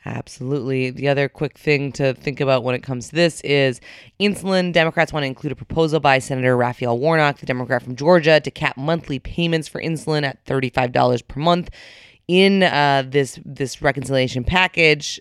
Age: 20-39